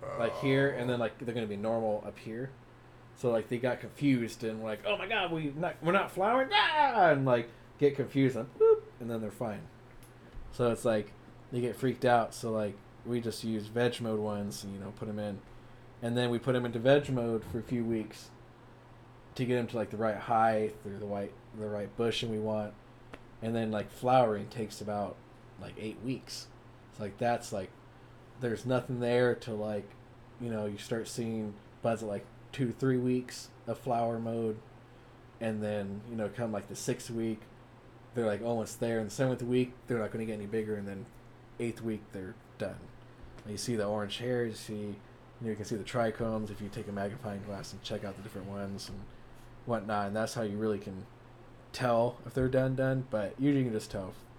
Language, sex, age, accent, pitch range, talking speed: English, male, 20-39, American, 105-125 Hz, 210 wpm